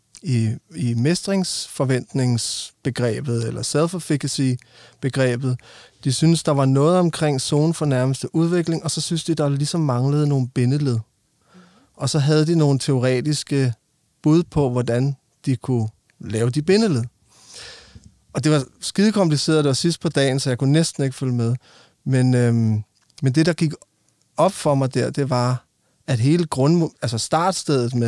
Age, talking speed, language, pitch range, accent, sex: 30-49, 150 wpm, Danish, 125-155 Hz, native, male